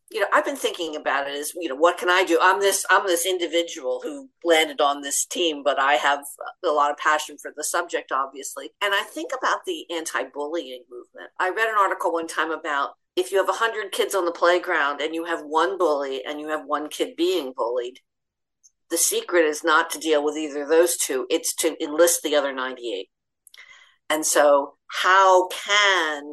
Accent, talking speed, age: American, 205 wpm, 50-69